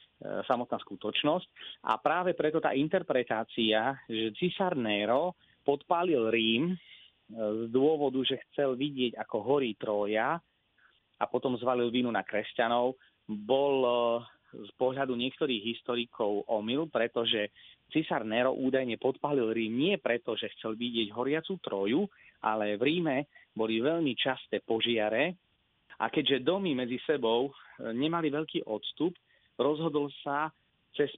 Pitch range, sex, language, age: 110-145 Hz, male, Slovak, 30-49